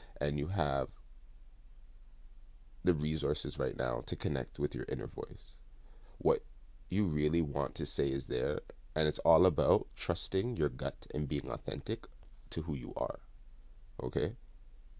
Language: English